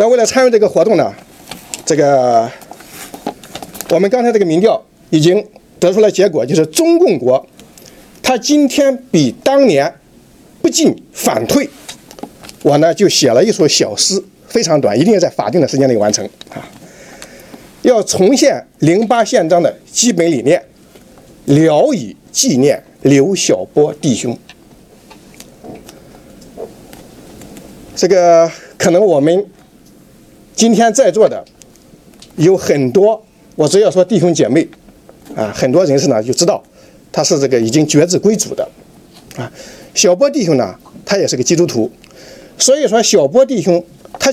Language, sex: Chinese, male